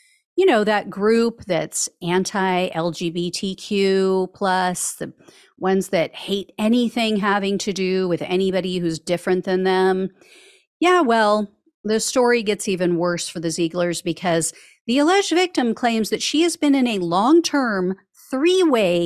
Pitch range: 170-225 Hz